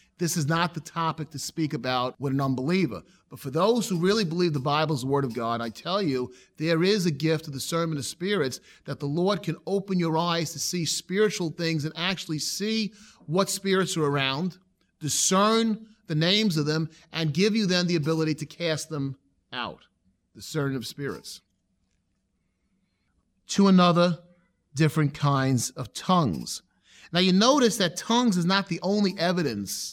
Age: 30-49